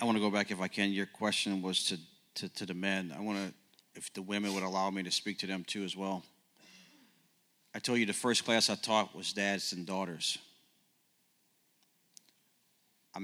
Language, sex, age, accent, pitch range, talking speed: English, male, 40-59, American, 95-105 Hz, 205 wpm